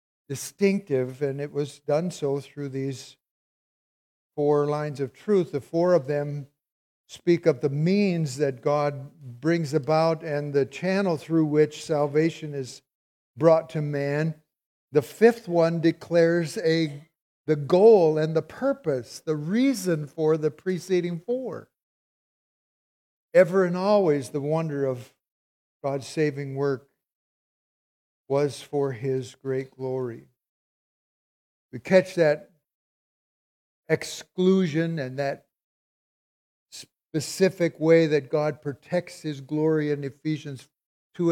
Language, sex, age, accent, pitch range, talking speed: English, male, 60-79, American, 140-165 Hz, 115 wpm